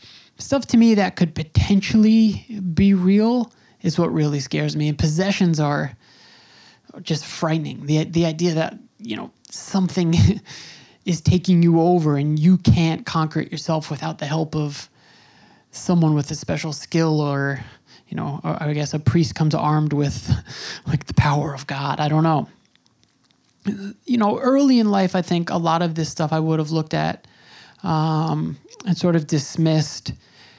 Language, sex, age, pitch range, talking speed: English, male, 20-39, 150-175 Hz, 165 wpm